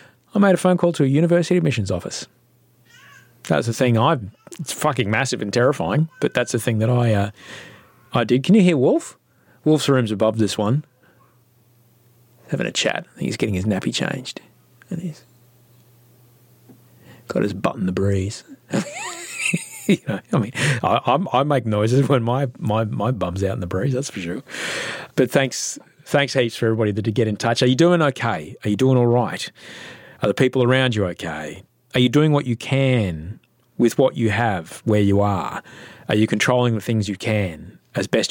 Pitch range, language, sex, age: 105-130 Hz, English, male, 30-49